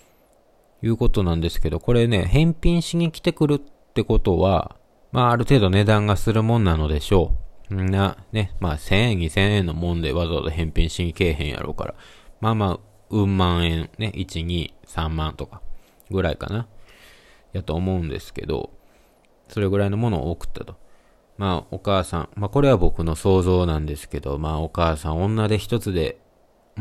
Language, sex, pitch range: Japanese, male, 85-105 Hz